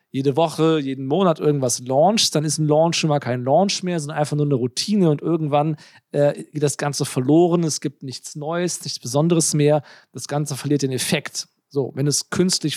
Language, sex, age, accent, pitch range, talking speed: German, male, 40-59, German, 145-180 Hz, 200 wpm